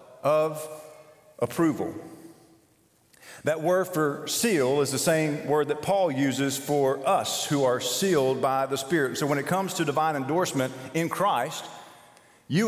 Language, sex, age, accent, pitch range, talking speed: English, male, 40-59, American, 125-170 Hz, 145 wpm